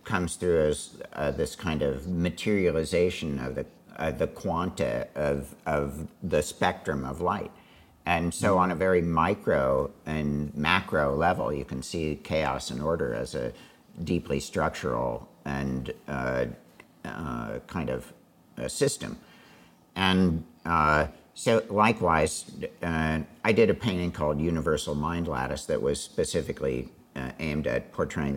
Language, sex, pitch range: English, male, 75-100 Hz